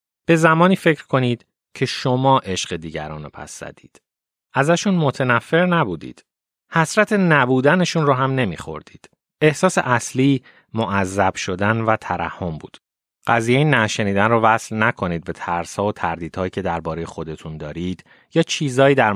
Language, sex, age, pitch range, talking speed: Persian, male, 30-49, 95-135 Hz, 135 wpm